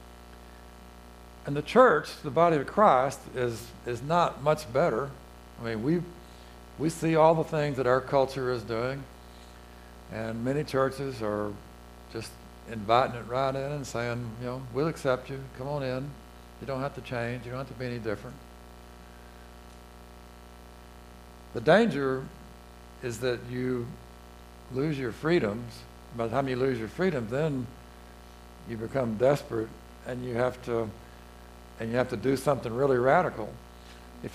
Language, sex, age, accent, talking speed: English, male, 60-79, American, 155 wpm